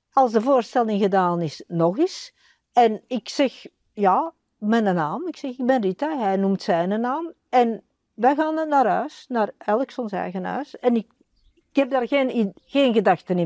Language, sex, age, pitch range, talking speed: Dutch, female, 60-79, 195-275 Hz, 175 wpm